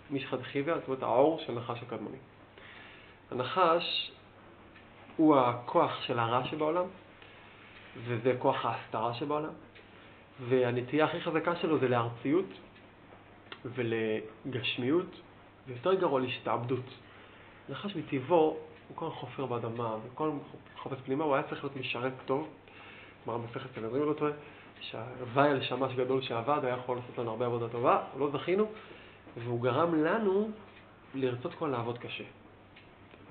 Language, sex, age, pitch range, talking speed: Hebrew, male, 20-39, 115-155 Hz, 130 wpm